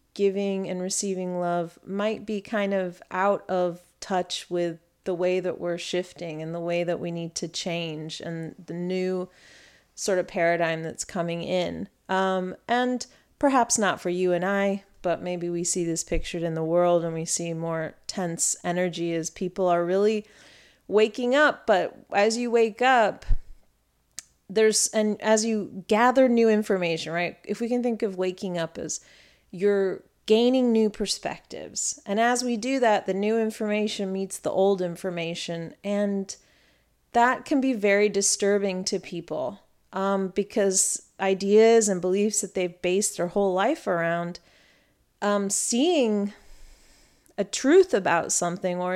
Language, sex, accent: English, female, American